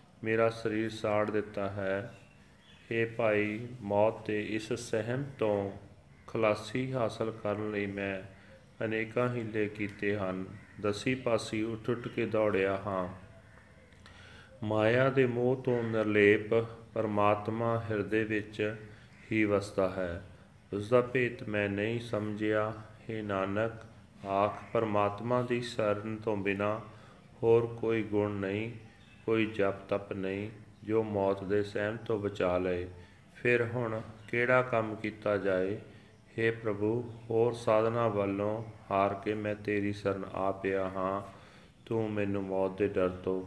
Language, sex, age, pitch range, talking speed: Punjabi, male, 40-59, 100-110 Hz, 125 wpm